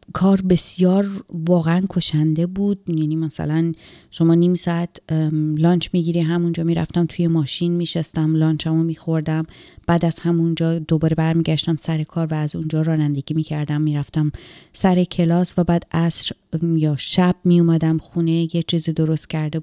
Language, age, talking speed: Persian, 30-49, 140 wpm